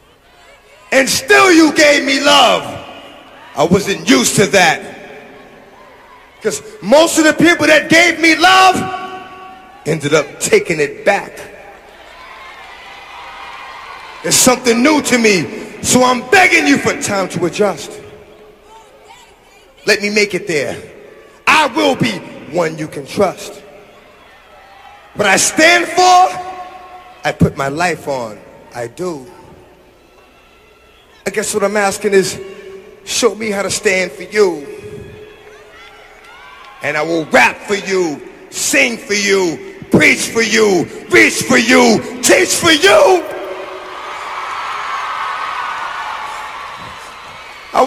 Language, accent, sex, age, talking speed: English, American, male, 30-49, 115 wpm